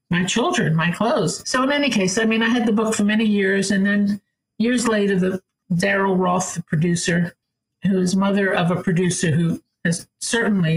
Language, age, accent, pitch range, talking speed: English, 50-69, American, 170-205 Hz, 195 wpm